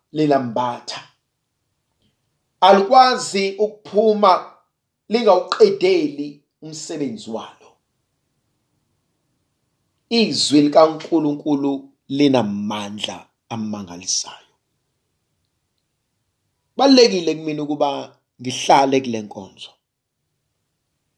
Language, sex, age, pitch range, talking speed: English, male, 50-69, 140-230 Hz, 70 wpm